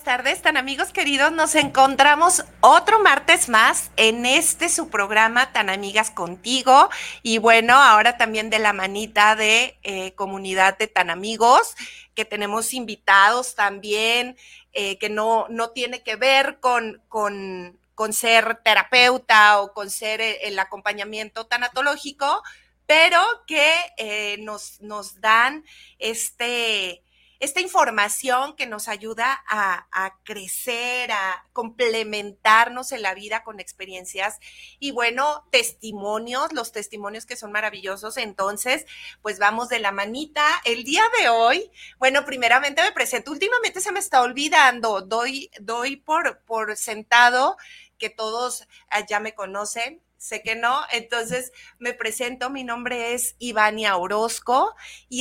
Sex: female